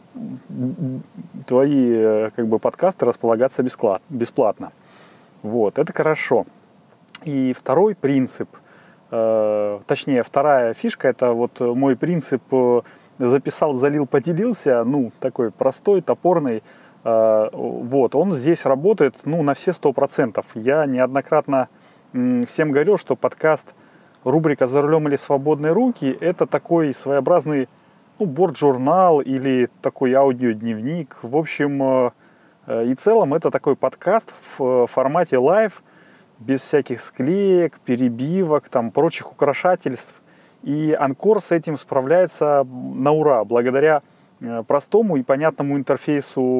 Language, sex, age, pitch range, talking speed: Russian, male, 30-49, 125-165 Hz, 105 wpm